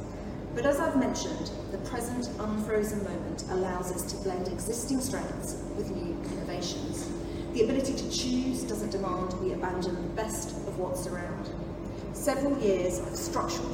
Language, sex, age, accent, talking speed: English, female, 40-59, British, 150 wpm